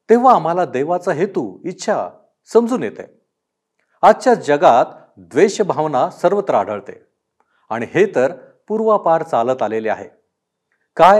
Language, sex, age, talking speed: Marathi, male, 50-69, 105 wpm